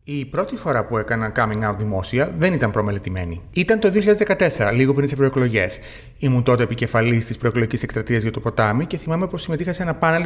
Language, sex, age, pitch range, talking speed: Greek, male, 30-49, 115-165 Hz, 200 wpm